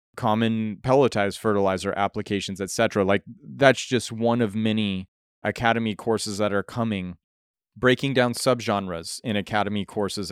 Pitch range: 100-115 Hz